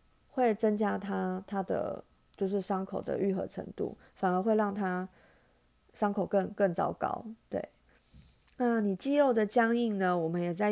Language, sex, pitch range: Chinese, female, 190-235 Hz